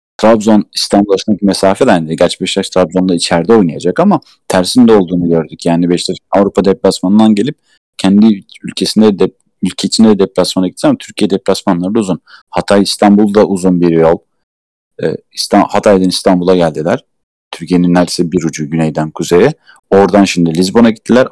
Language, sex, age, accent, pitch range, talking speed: Turkish, male, 40-59, native, 85-100 Hz, 135 wpm